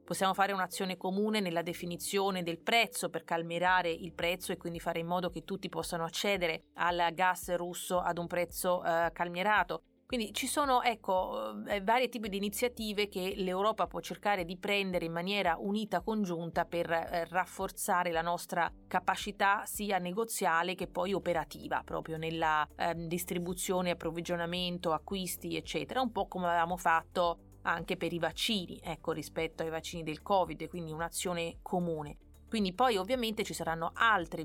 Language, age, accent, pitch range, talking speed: Italian, 30-49, native, 165-190 Hz, 155 wpm